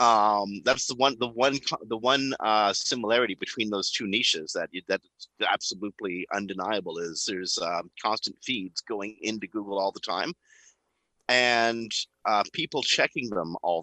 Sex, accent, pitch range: male, American, 95-125 Hz